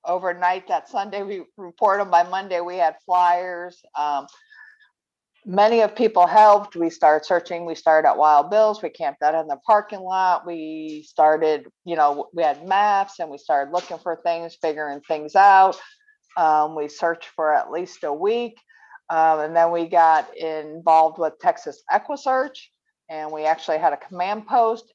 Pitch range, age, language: 160-210 Hz, 50-69, English